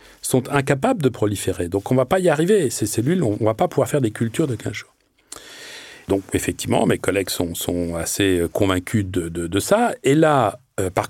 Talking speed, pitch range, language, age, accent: 215 wpm, 110-160 Hz, French, 40-59, French